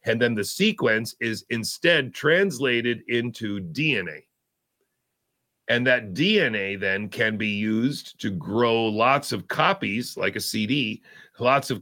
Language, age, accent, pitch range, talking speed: English, 40-59, American, 110-130 Hz, 130 wpm